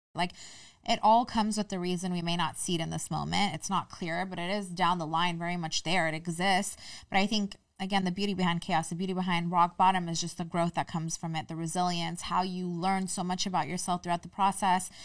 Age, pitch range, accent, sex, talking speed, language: 20-39, 175-200 Hz, American, female, 245 wpm, English